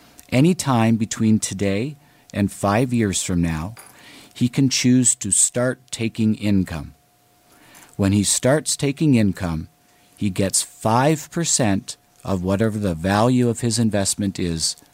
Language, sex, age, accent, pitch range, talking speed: English, male, 50-69, American, 95-125 Hz, 130 wpm